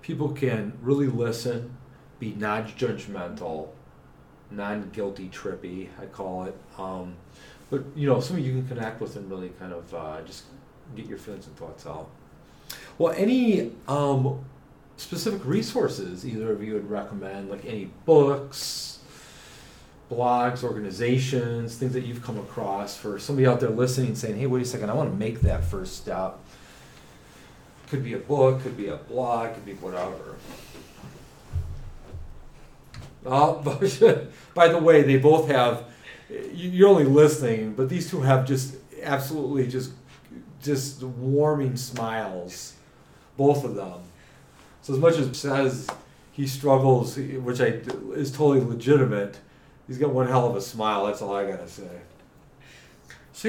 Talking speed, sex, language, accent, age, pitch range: 145 wpm, male, English, American, 40-59, 105-140 Hz